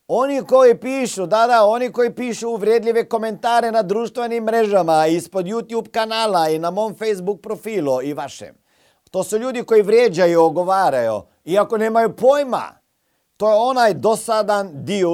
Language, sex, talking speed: Croatian, male, 145 wpm